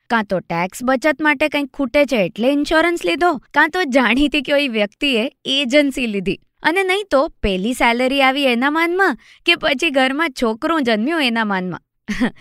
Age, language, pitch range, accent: 20-39, Gujarati, 225-310 Hz, native